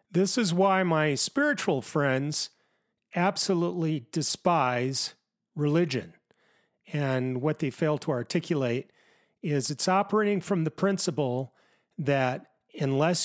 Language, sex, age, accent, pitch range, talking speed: English, male, 40-59, American, 150-195 Hz, 105 wpm